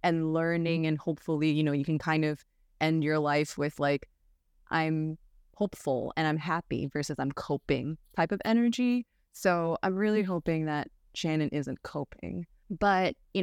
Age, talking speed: 20-39, 160 wpm